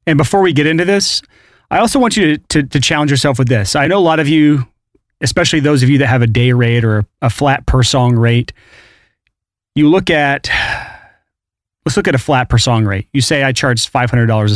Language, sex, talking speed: English, male, 225 wpm